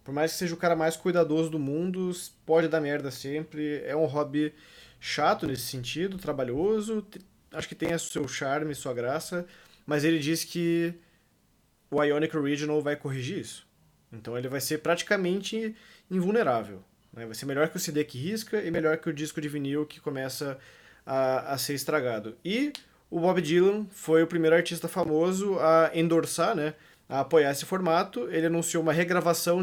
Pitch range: 145-175 Hz